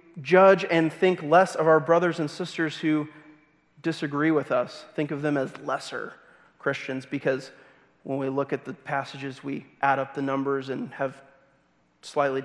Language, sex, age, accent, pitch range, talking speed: English, male, 30-49, American, 140-160 Hz, 165 wpm